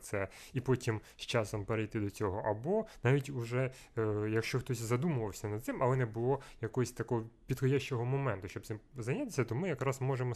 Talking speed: 175 wpm